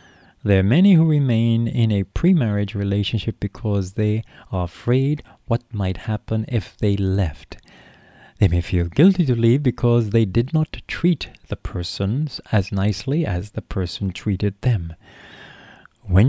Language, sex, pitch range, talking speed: English, male, 95-125 Hz, 145 wpm